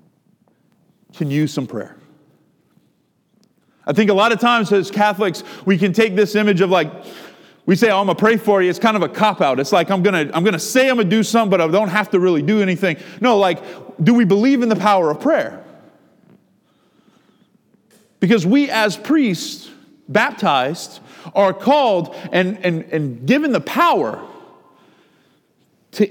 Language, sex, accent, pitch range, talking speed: English, male, American, 180-220 Hz, 185 wpm